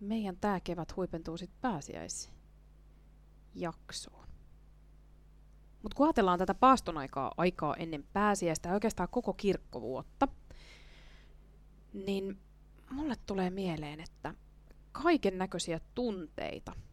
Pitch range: 155-205 Hz